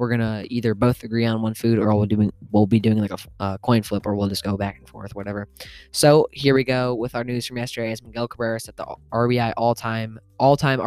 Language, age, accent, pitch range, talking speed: English, 10-29, American, 105-120 Hz, 250 wpm